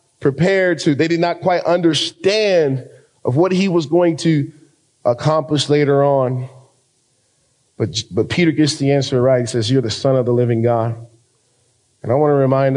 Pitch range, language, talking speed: 125-145 Hz, English, 175 wpm